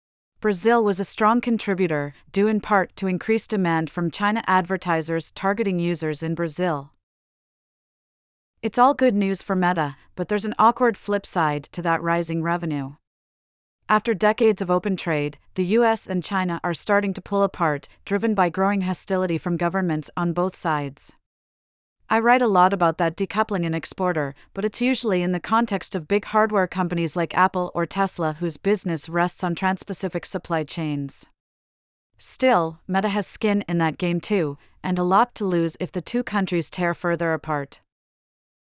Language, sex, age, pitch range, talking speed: English, female, 40-59, 165-200 Hz, 165 wpm